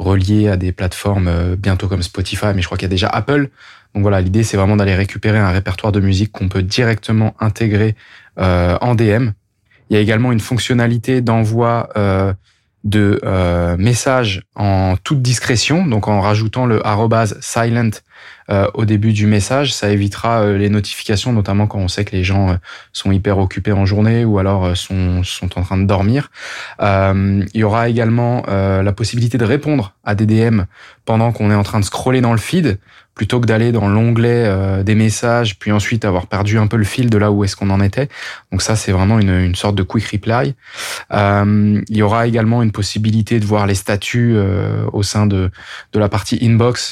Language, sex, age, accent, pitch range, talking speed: French, male, 20-39, French, 95-115 Hz, 195 wpm